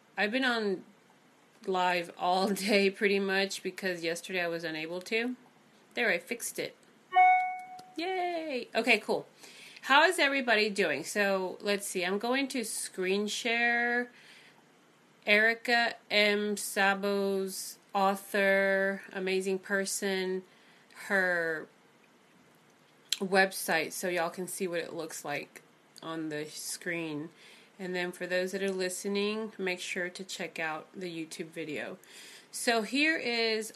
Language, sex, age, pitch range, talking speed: English, female, 30-49, 180-210 Hz, 125 wpm